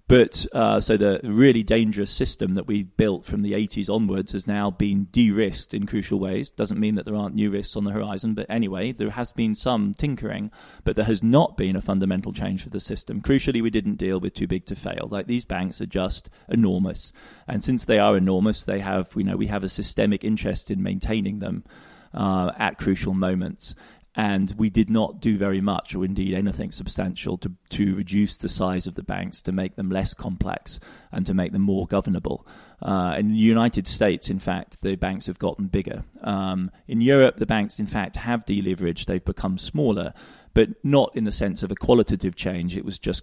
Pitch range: 95-110 Hz